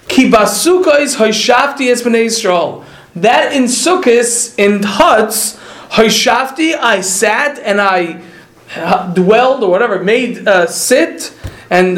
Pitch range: 210-265 Hz